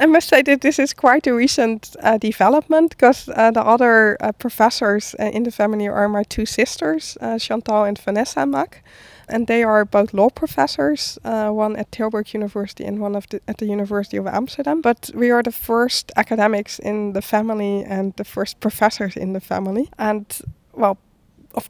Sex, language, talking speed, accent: female, English, 190 wpm, Dutch